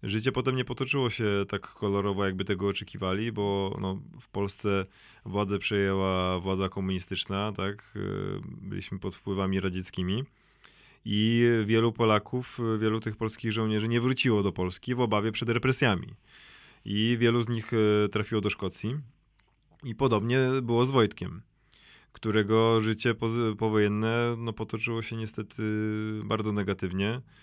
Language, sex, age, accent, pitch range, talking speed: Polish, male, 20-39, native, 100-115 Hz, 130 wpm